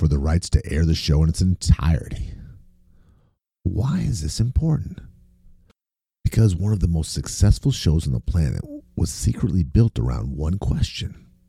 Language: English